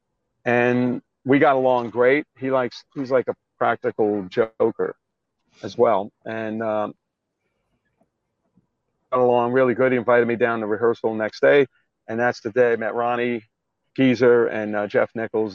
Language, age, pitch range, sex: English, 40-59, 110-130 Hz, male